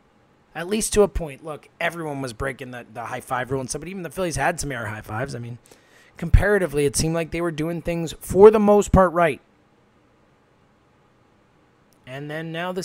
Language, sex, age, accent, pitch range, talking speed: English, male, 20-39, American, 135-185 Hz, 190 wpm